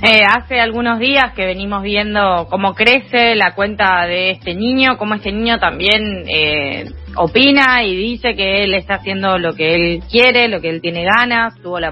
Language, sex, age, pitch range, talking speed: Spanish, female, 20-39, 175-220 Hz, 185 wpm